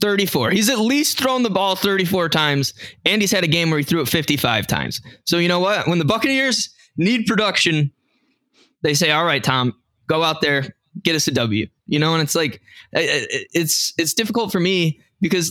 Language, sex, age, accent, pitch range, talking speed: English, male, 20-39, American, 140-190 Hz, 200 wpm